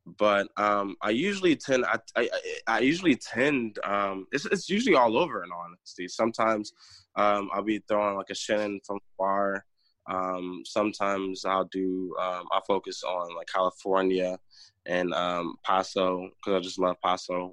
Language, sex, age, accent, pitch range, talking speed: English, male, 20-39, American, 90-105 Hz, 160 wpm